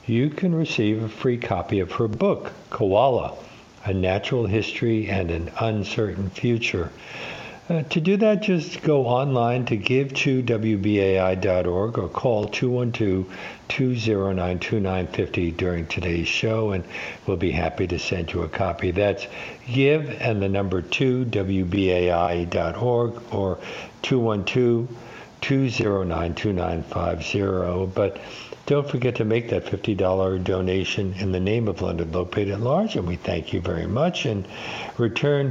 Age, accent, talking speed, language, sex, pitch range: 60-79, American, 125 wpm, English, male, 95-120 Hz